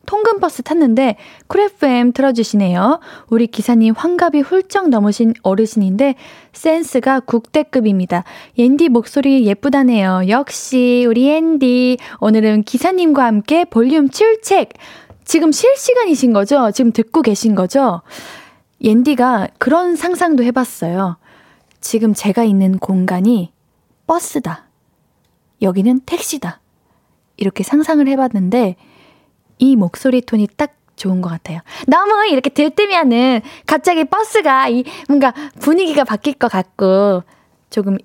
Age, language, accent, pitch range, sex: 20-39, Korean, native, 205-285 Hz, female